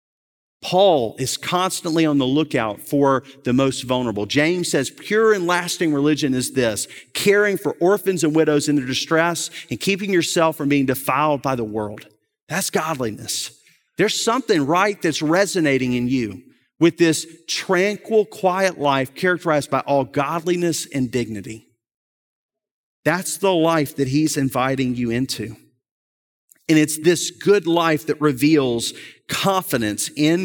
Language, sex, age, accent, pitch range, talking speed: English, male, 40-59, American, 125-165 Hz, 140 wpm